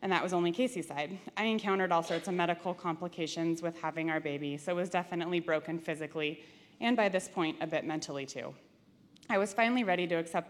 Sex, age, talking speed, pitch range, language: female, 20-39, 210 wpm, 160-195 Hz, English